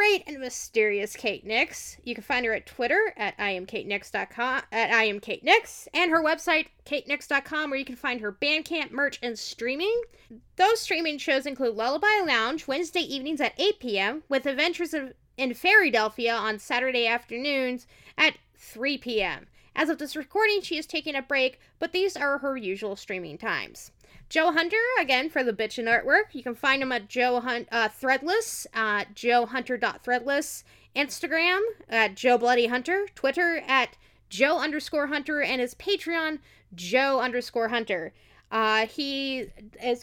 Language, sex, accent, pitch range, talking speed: English, female, American, 235-320 Hz, 155 wpm